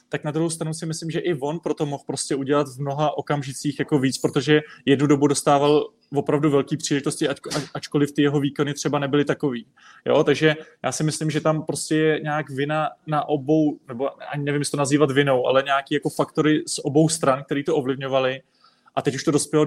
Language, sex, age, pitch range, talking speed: Czech, male, 20-39, 140-155 Hz, 205 wpm